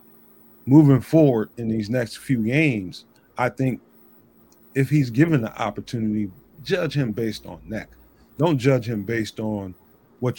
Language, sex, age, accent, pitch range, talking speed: English, male, 40-59, American, 105-130 Hz, 145 wpm